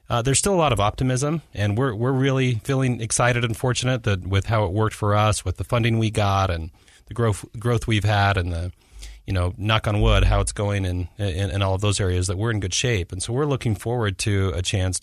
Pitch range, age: 95-120 Hz, 30-49